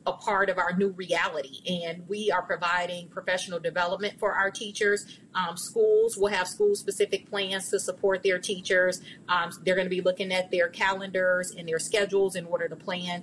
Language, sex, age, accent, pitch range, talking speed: English, female, 30-49, American, 175-205 Hz, 190 wpm